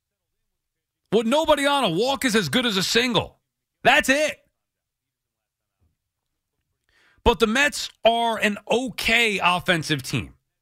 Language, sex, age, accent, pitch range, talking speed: English, male, 40-59, American, 135-200 Hz, 120 wpm